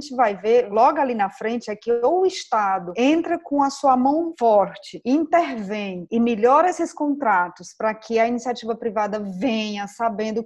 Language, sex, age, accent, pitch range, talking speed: Portuguese, female, 20-39, Brazilian, 220-275 Hz, 180 wpm